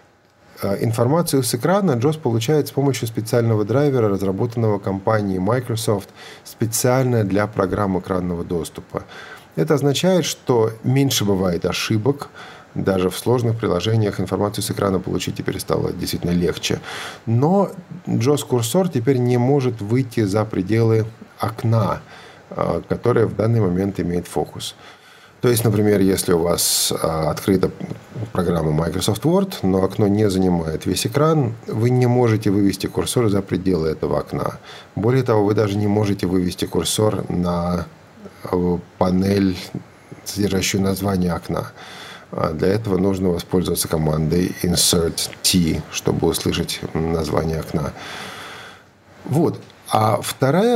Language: Russian